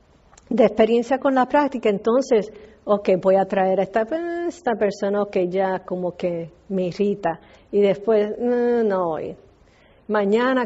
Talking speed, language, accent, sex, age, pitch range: 150 wpm, English, American, female, 50-69, 200-255 Hz